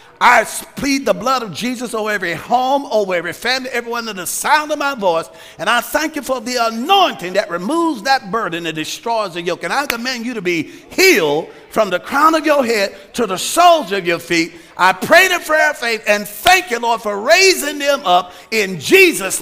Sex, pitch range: male, 185-275 Hz